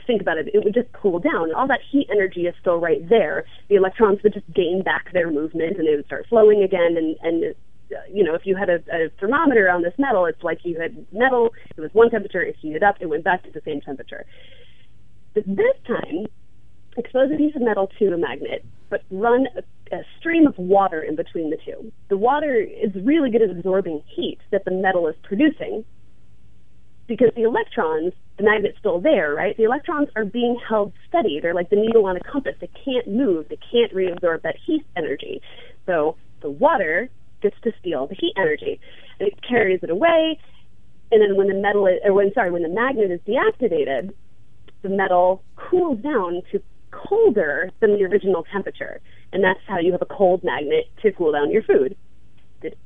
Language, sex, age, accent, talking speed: English, female, 30-49, American, 205 wpm